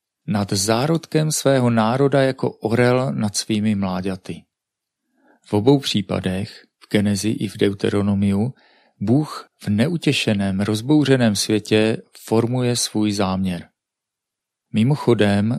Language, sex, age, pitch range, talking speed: Czech, male, 40-59, 105-130 Hz, 100 wpm